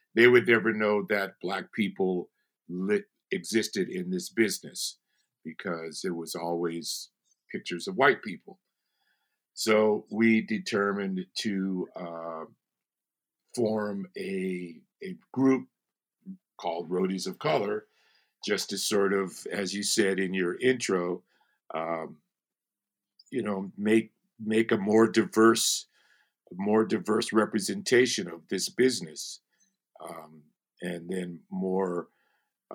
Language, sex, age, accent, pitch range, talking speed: English, male, 50-69, American, 95-115 Hz, 110 wpm